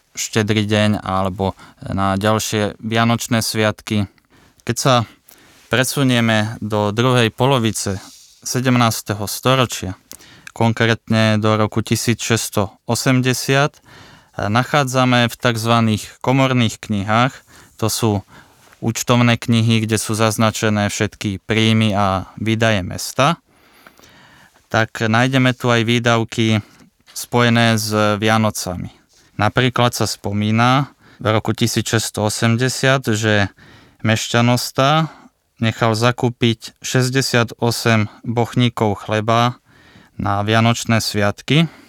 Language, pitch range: Slovak, 105-120 Hz